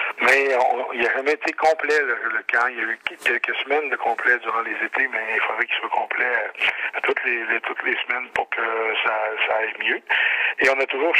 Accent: French